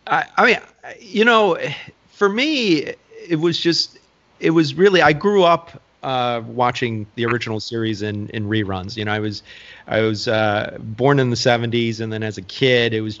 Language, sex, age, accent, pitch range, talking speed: English, male, 30-49, American, 105-125 Hz, 185 wpm